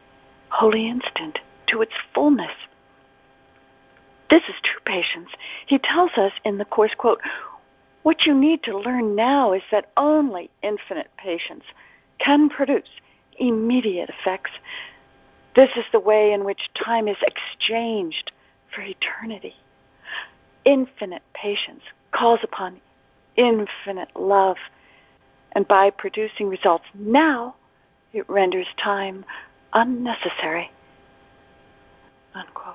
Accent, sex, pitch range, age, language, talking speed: American, female, 200-275 Hz, 50-69, English, 105 wpm